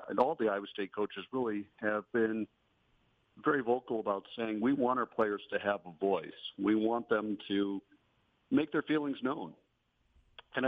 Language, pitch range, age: English, 105-130 Hz, 50-69